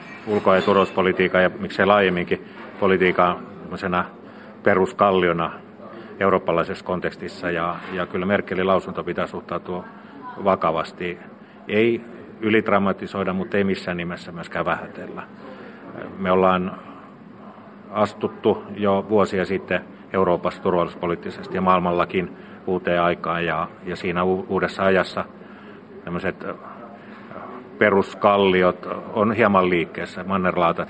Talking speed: 95 wpm